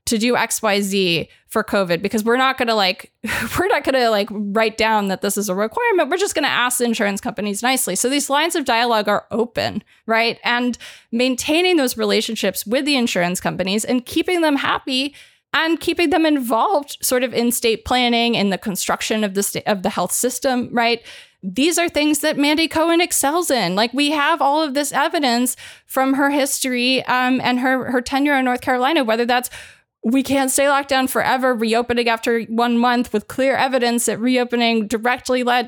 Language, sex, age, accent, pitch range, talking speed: English, female, 20-39, American, 225-275 Hz, 200 wpm